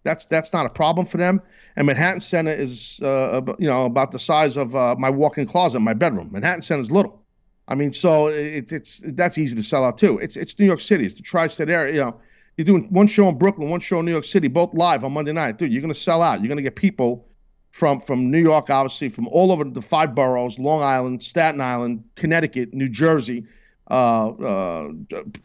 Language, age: English, 50-69